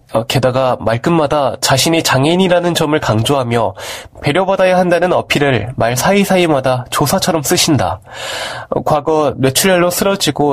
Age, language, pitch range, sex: 20-39, Korean, 125-175 Hz, male